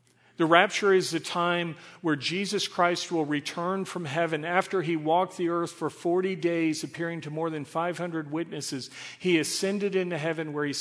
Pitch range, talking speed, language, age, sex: 150-175 Hz, 180 wpm, English, 50-69, male